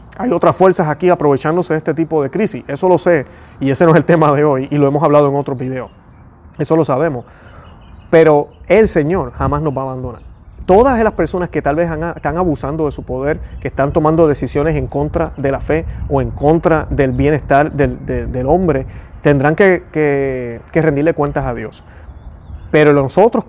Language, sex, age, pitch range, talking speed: Spanish, male, 30-49, 130-165 Hz, 200 wpm